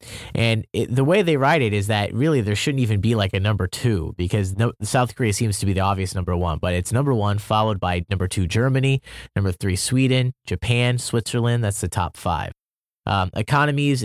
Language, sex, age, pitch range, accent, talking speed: English, male, 30-49, 100-125 Hz, American, 200 wpm